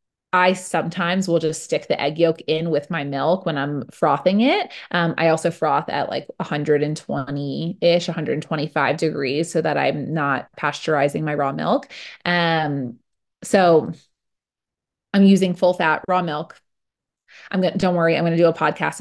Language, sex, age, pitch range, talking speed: English, female, 20-39, 155-190 Hz, 165 wpm